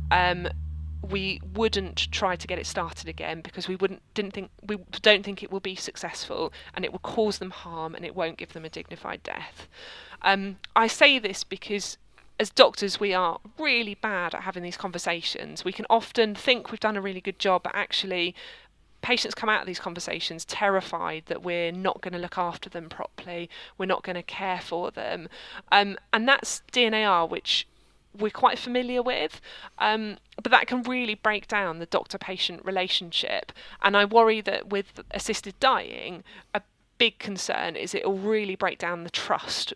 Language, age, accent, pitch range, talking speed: English, 20-39, British, 170-210 Hz, 185 wpm